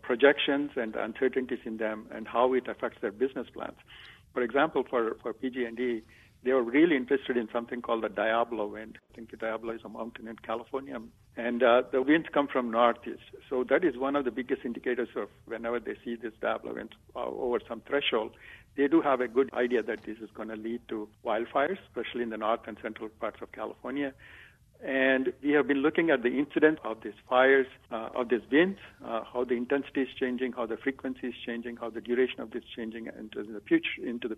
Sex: male